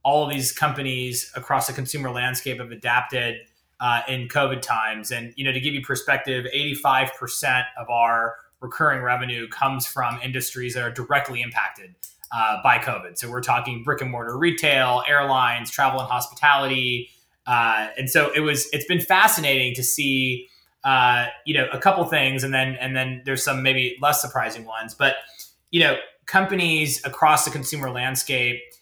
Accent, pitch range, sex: American, 125-145 Hz, male